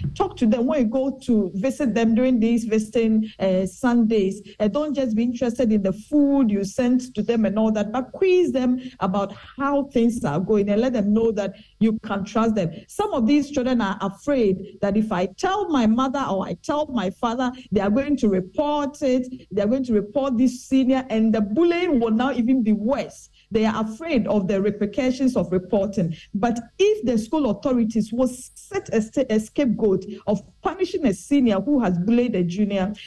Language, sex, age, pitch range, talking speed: English, female, 50-69, 175-255 Hz, 200 wpm